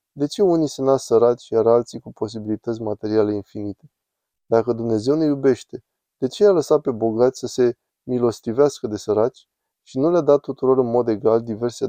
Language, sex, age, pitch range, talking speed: Romanian, male, 20-39, 110-130 Hz, 180 wpm